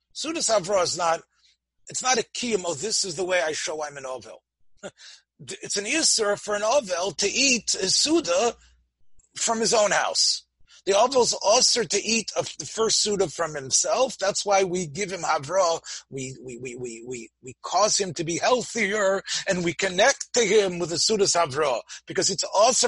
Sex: male